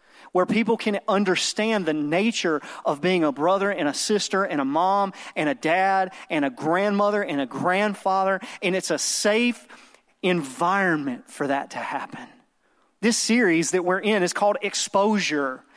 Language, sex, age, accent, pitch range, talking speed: English, male, 30-49, American, 165-220 Hz, 160 wpm